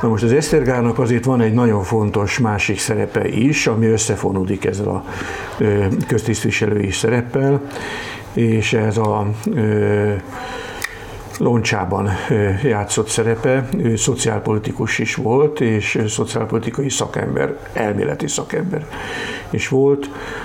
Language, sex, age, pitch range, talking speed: Hungarian, male, 60-79, 100-115 Hz, 100 wpm